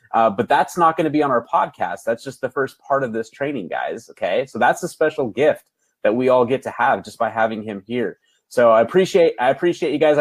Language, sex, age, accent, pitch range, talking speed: English, male, 30-49, American, 120-150 Hz, 255 wpm